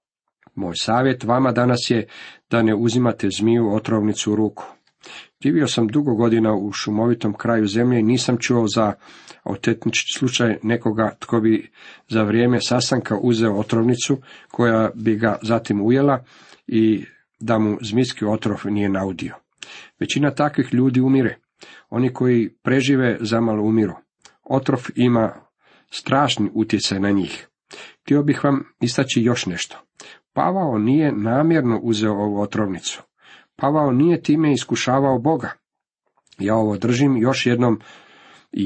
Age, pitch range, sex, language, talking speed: 50-69, 105-125 Hz, male, Croatian, 130 wpm